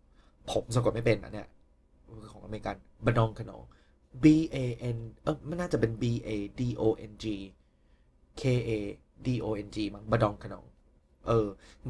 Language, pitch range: Thai, 100-125 Hz